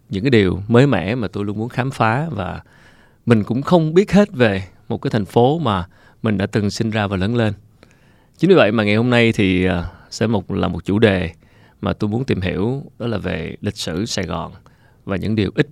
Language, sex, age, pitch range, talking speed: Vietnamese, male, 20-39, 100-120 Hz, 230 wpm